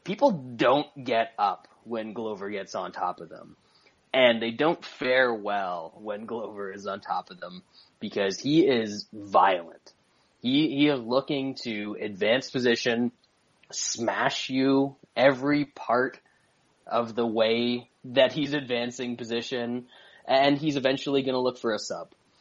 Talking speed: 145 wpm